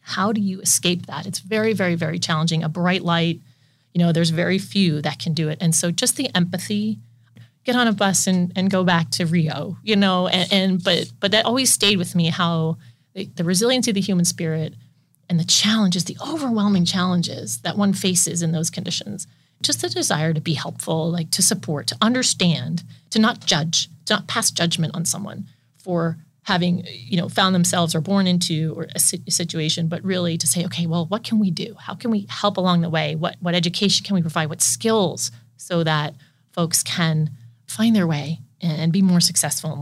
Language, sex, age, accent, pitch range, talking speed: English, female, 30-49, American, 160-190 Hz, 205 wpm